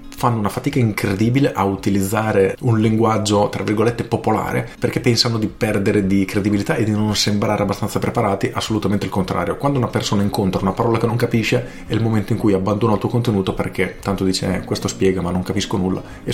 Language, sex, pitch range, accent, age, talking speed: Italian, male, 100-120 Hz, native, 40-59, 200 wpm